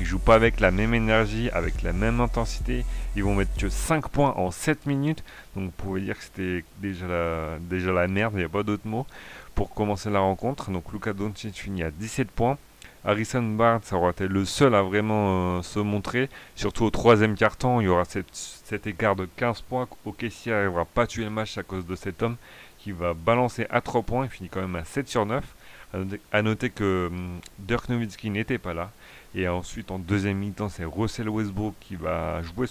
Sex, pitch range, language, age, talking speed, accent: male, 95-115 Hz, French, 30-49, 220 wpm, French